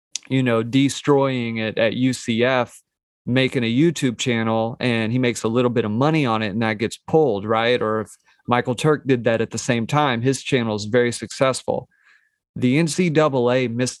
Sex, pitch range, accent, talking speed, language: male, 115-140 Hz, American, 185 wpm, English